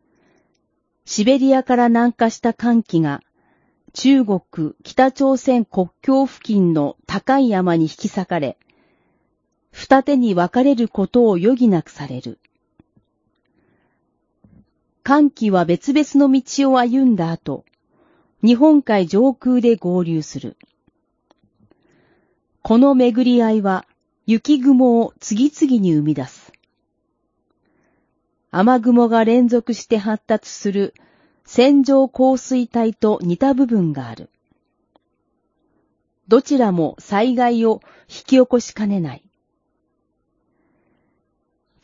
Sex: female